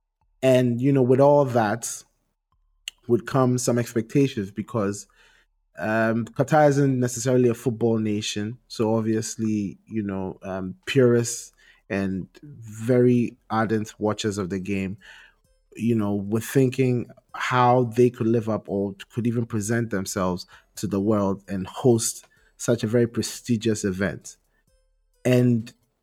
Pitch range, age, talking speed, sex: 105-125 Hz, 30-49, 130 wpm, male